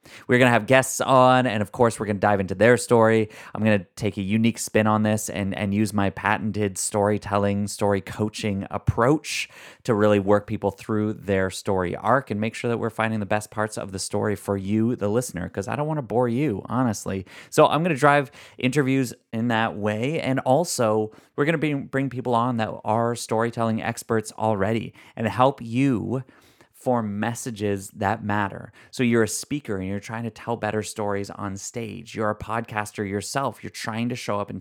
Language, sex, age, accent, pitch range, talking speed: English, male, 30-49, American, 100-120 Hz, 205 wpm